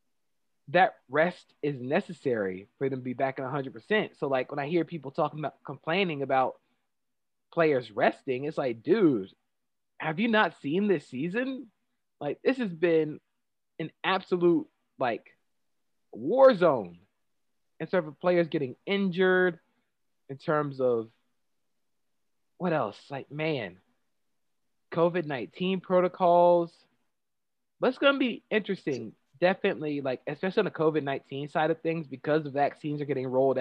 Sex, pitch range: male, 140-185 Hz